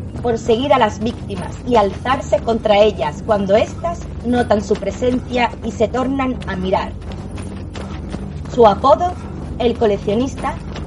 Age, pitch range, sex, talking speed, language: 30-49, 205-260 Hz, female, 125 wpm, Spanish